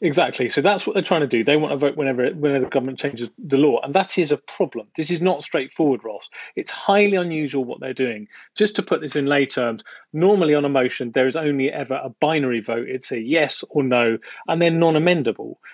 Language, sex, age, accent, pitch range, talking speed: English, male, 30-49, British, 135-175 Hz, 235 wpm